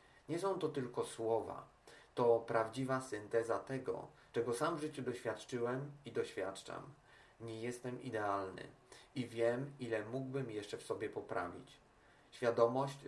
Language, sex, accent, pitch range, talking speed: Polish, male, native, 115-140 Hz, 130 wpm